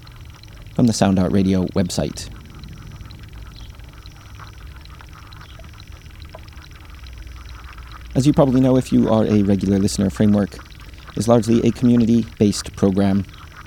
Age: 30-49